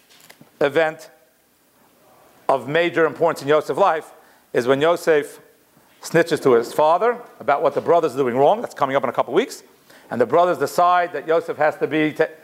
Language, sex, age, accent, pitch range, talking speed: English, male, 50-69, American, 165-220 Hz, 185 wpm